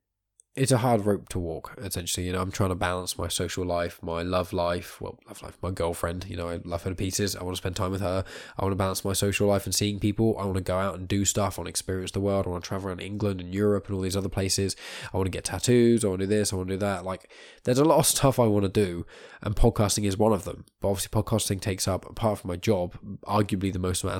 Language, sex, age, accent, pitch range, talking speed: English, male, 10-29, British, 90-105 Hz, 295 wpm